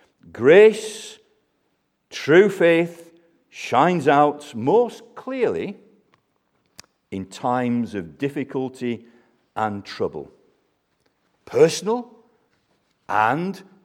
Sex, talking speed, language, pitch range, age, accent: male, 65 wpm, English, 140-200 Hz, 50-69, British